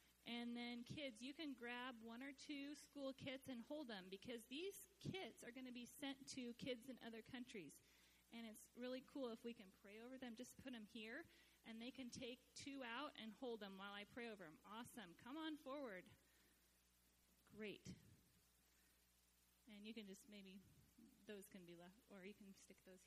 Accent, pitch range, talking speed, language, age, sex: American, 205-260 Hz, 190 wpm, English, 30-49, female